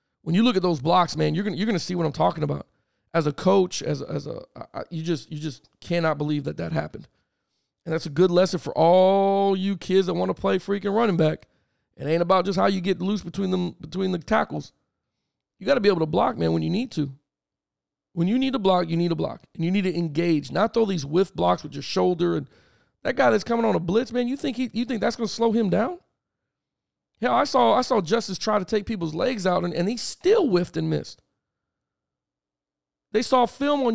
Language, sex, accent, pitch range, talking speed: English, male, American, 165-225 Hz, 245 wpm